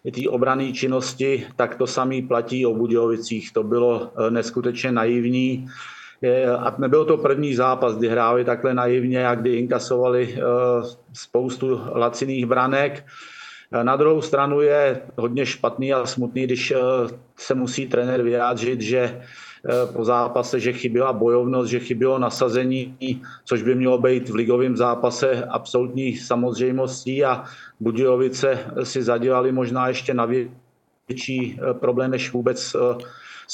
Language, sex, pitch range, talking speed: Czech, male, 120-130 Hz, 130 wpm